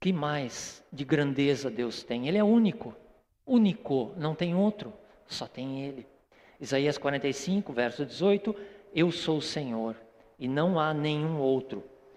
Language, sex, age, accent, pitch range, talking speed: Portuguese, male, 50-69, Brazilian, 130-180 Hz, 145 wpm